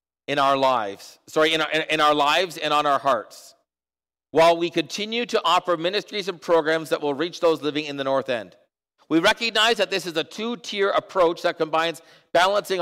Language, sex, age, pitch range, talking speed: English, male, 50-69, 150-195 Hz, 190 wpm